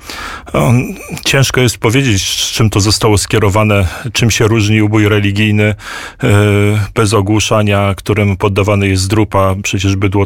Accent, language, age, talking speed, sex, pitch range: native, Polish, 40-59, 115 wpm, male, 100-115 Hz